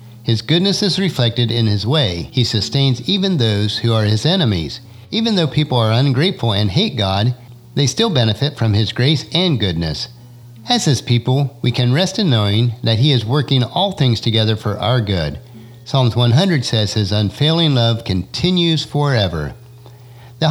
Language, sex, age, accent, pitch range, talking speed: English, male, 50-69, American, 110-150 Hz, 170 wpm